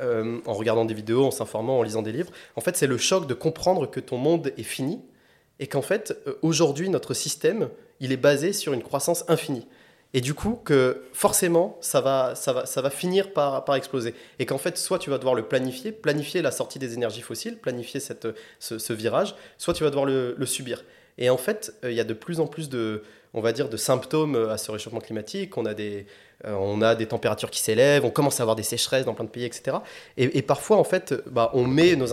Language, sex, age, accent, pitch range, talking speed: French, male, 20-39, French, 115-155 Hz, 240 wpm